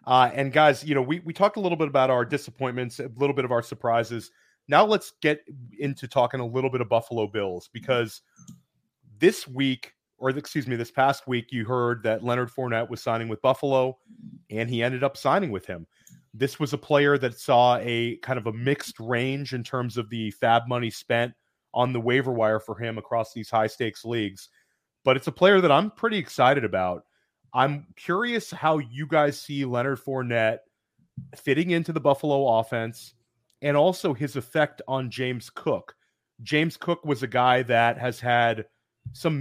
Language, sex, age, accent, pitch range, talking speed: English, male, 30-49, American, 115-145 Hz, 190 wpm